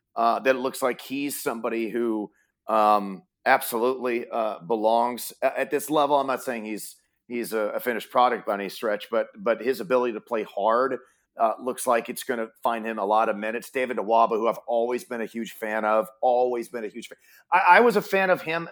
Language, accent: English, American